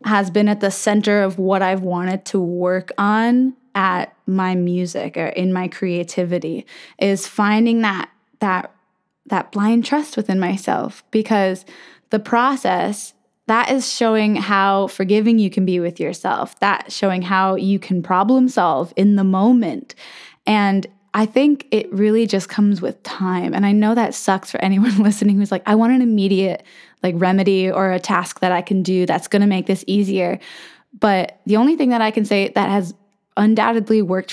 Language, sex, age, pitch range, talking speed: English, female, 10-29, 185-215 Hz, 175 wpm